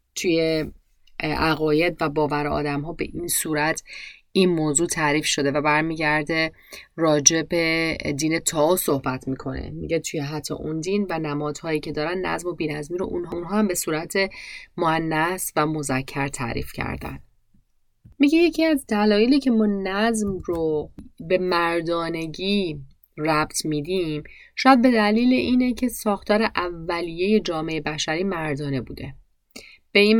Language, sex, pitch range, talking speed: Persian, female, 150-200 Hz, 135 wpm